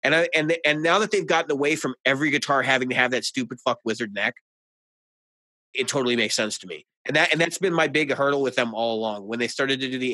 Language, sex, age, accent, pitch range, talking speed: English, male, 30-49, American, 115-155 Hz, 260 wpm